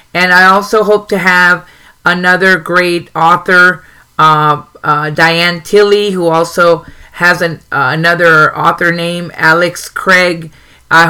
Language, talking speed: English, 130 wpm